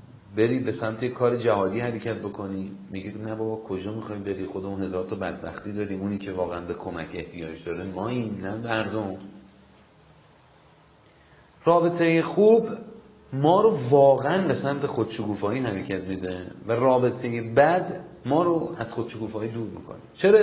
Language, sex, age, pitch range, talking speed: Persian, male, 40-59, 110-155 Hz, 145 wpm